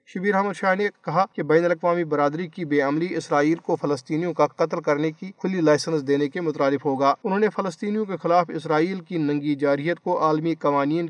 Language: Urdu